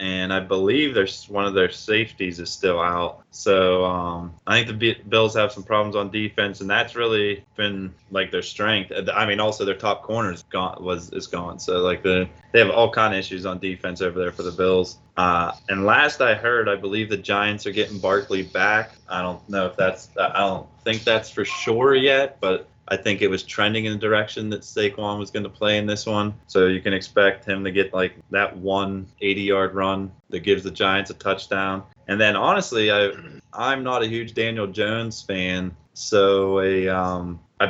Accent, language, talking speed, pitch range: American, English, 210 wpm, 95-110 Hz